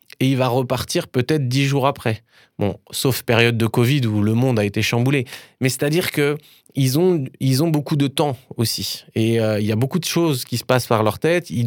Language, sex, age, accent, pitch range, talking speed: French, male, 20-39, French, 115-140 Hz, 225 wpm